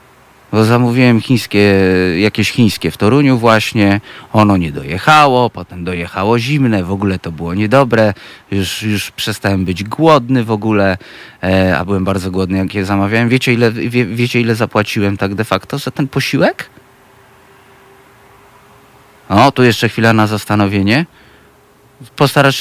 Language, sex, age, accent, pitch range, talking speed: Polish, male, 30-49, native, 100-140 Hz, 140 wpm